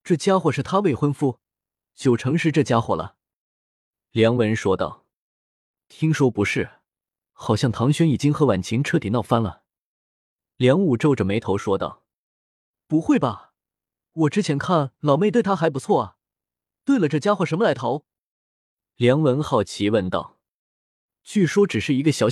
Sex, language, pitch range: male, Chinese, 115-165 Hz